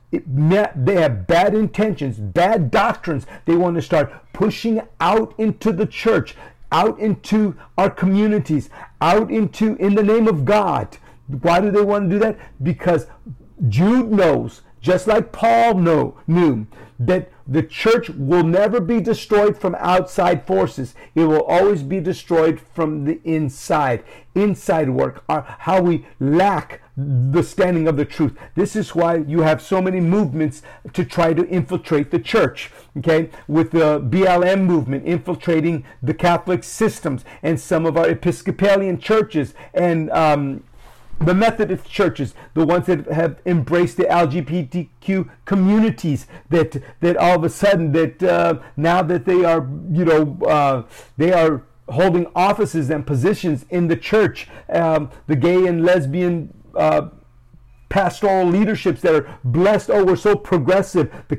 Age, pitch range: 50-69, 155-195 Hz